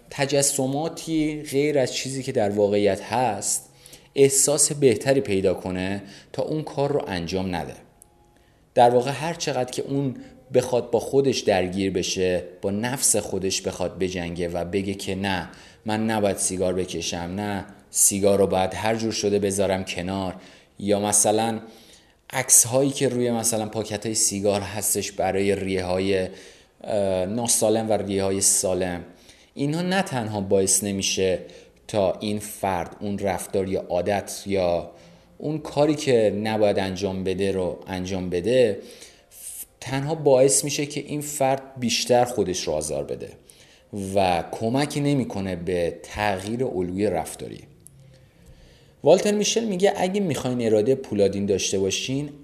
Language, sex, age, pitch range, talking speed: Persian, male, 30-49, 95-130 Hz, 135 wpm